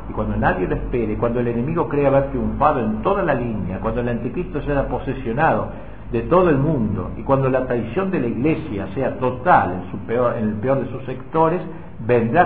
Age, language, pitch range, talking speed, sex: 50-69, Spanish, 105-140 Hz, 205 wpm, male